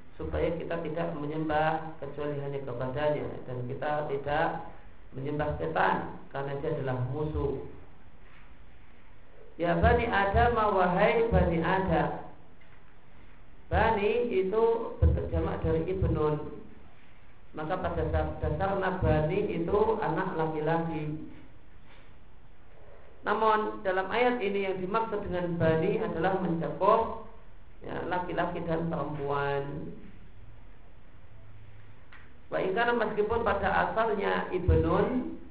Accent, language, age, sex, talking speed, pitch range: native, Indonesian, 50-69, male, 95 wpm, 130-195 Hz